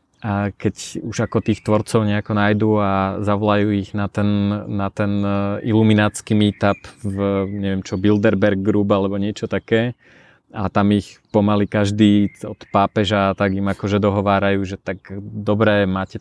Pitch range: 100-110 Hz